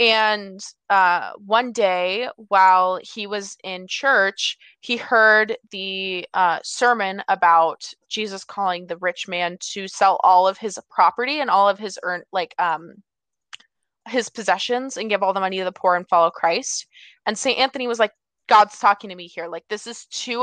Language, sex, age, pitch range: English, female, 20-39, 185-225 Hz